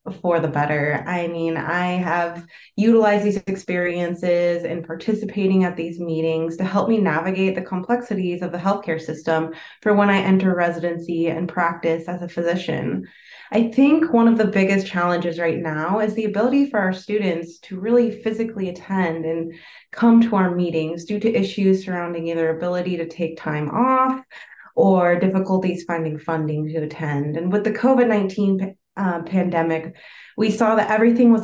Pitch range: 165-210 Hz